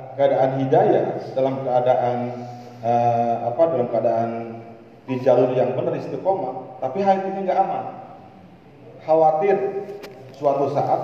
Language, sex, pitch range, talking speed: Malay, male, 125-155 Hz, 115 wpm